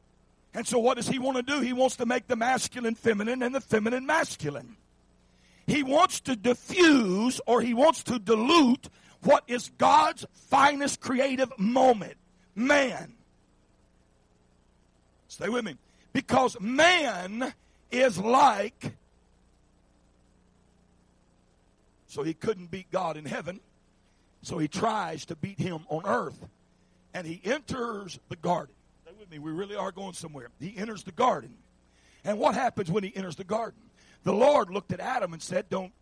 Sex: male